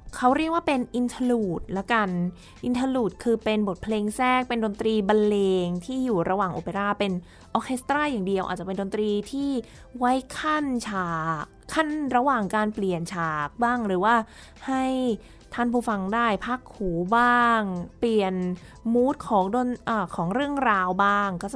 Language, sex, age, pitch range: Thai, female, 20-39, 200-250 Hz